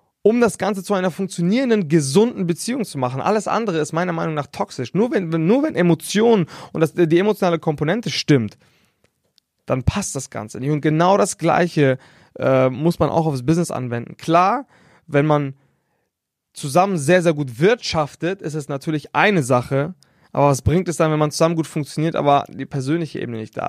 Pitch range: 140-175 Hz